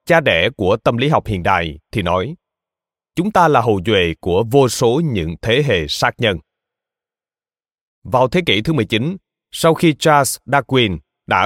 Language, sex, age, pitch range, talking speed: Vietnamese, male, 20-39, 110-155 Hz, 175 wpm